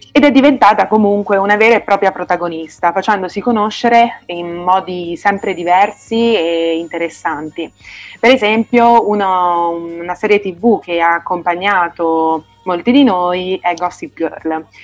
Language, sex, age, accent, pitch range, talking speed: Italian, female, 30-49, native, 170-220 Hz, 130 wpm